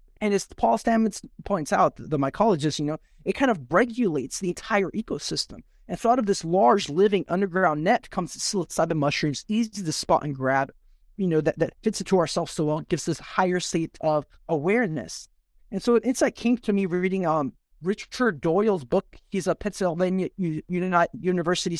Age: 30-49